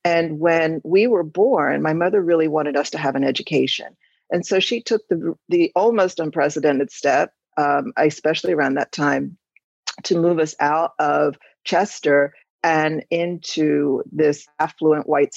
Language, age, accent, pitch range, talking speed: English, 40-59, American, 145-195 Hz, 150 wpm